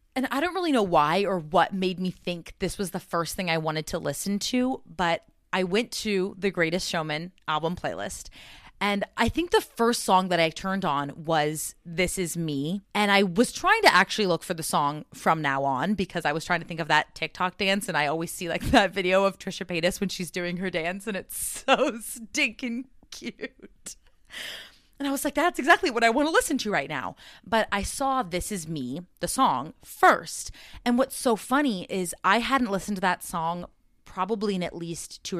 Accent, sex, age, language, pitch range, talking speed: American, female, 30-49, English, 170-220 Hz, 215 wpm